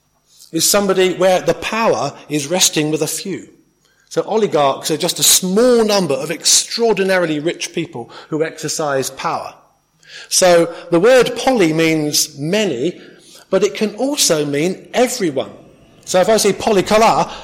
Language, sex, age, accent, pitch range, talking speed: English, male, 40-59, British, 155-195 Hz, 140 wpm